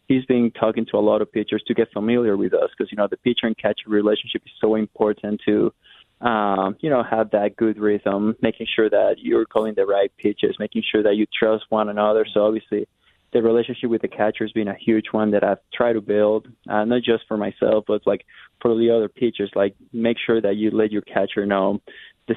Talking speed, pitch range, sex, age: 230 wpm, 105-115 Hz, male, 20-39